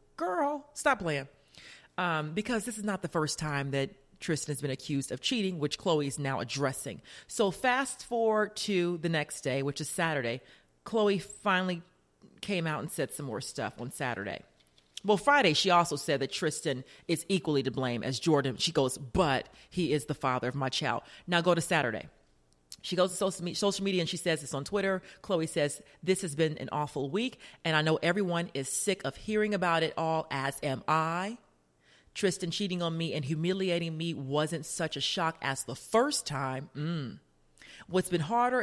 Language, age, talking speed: English, 40-59, 190 wpm